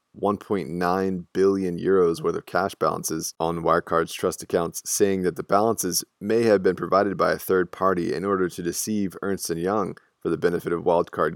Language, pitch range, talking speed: English, 85-95 Hz, 175 wpm